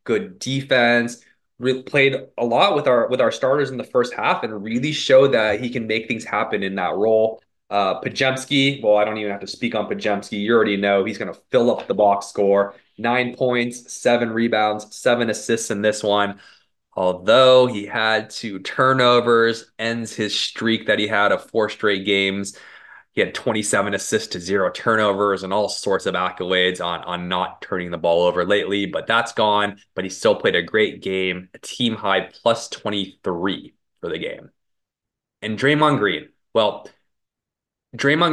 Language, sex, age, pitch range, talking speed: English, male, 20-39, 100-120 Hz, 180 wpm